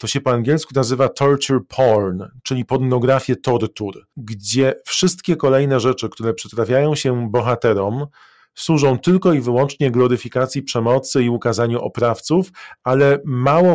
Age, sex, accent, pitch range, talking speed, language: 40-59, male, native, 120-140 Hz, 125 wpm, Polish